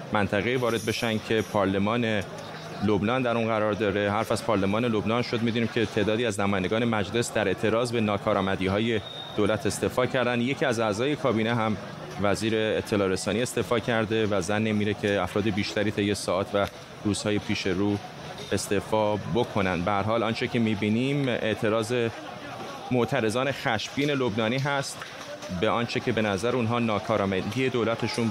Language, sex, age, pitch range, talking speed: Persian, male, 30-49, 105-130 Hz, 155 wpm